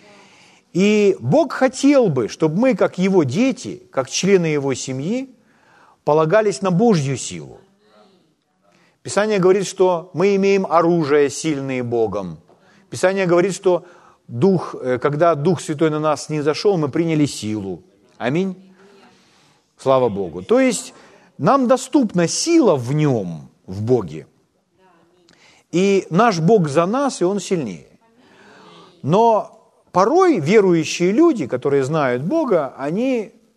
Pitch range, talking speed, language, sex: 155-215 Hz, 120 wpm, Ukrainian, male